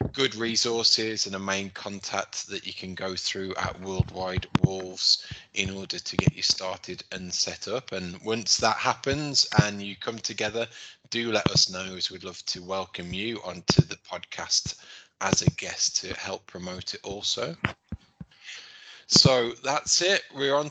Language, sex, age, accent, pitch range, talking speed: English, male, 20-39, British, 95-115 Hz, 165 wpm